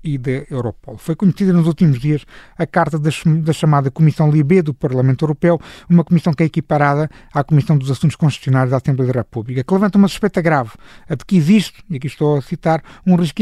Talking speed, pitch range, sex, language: 210 wpm, 145-185 Hz, male, Portuguese